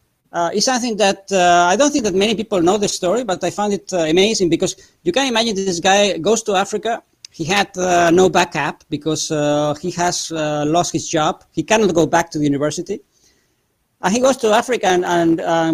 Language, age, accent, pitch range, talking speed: English, 40-59, Spanish, 160-210 Hz, 215 wpm